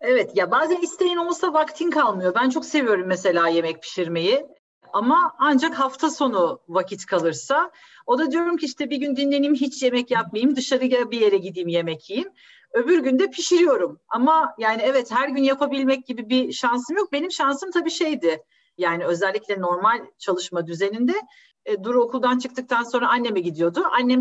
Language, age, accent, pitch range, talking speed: Turkish, 40-59, native, 195-295 Hz, 165 wpm